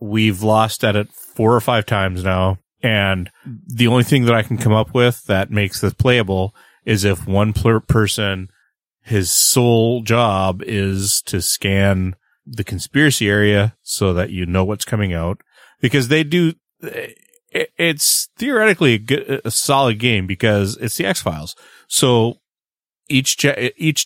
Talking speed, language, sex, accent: 150 wpm, English, male, American